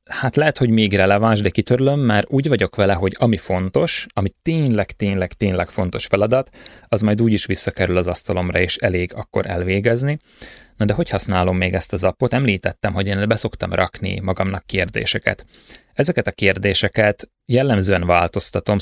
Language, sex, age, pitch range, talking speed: Hungarian, male, 20-39, 90-110 Hz, 165 wpm